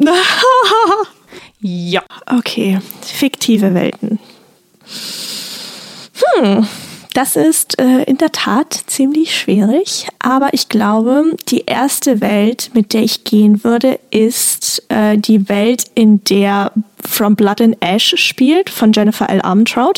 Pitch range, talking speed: 210-250 Hz, 115 wpm